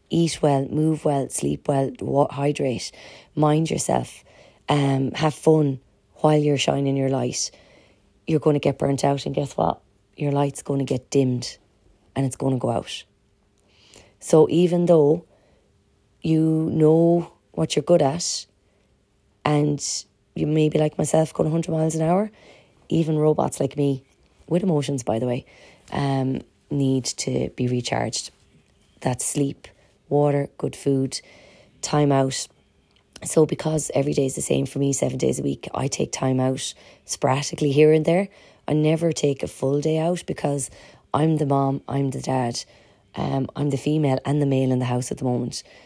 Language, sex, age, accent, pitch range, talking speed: English, female, 30-49, Irish, 130-155 Hz, 165 wpm